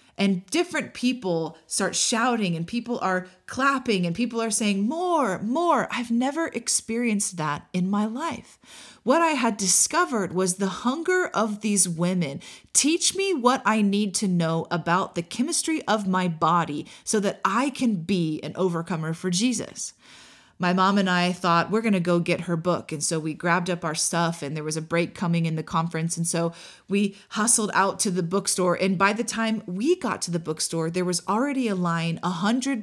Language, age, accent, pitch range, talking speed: English, 30-49, American, 170-220 Hz, 195 wpm